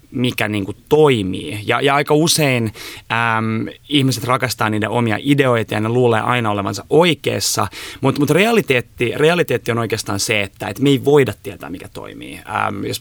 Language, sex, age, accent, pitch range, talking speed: Finnish, male, 20-39, native, 105-130 Hz, 145 wpm